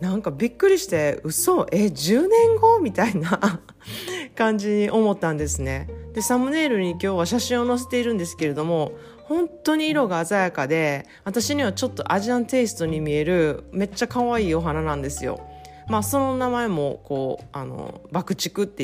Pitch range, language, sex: 155-225 Hz, Japanese, female